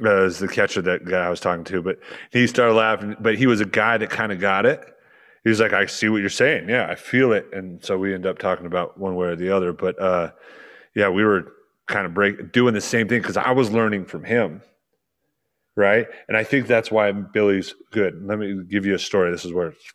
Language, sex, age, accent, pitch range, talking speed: English, male, 30-49, American, 95-115 Hz, 255 wpm